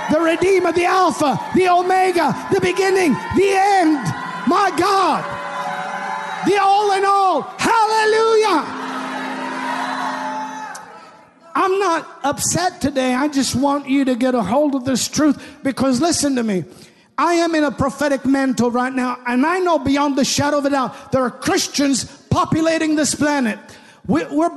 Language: English